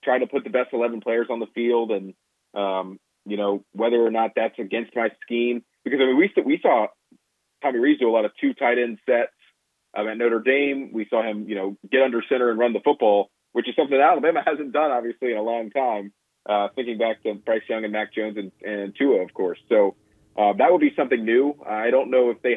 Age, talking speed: 30-49, 240 wpm